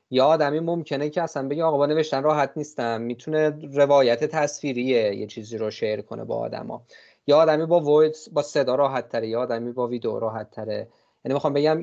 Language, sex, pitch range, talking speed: Persian, male, 125-160 Hz, 190 wpm